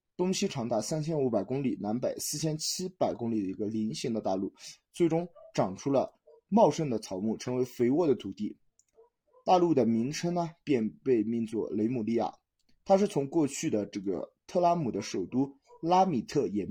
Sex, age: male, 20-39